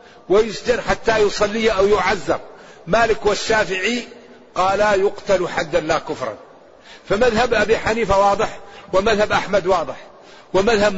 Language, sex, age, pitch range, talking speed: Arabic, male, 50-69, 190-220 Hz, 115 wpm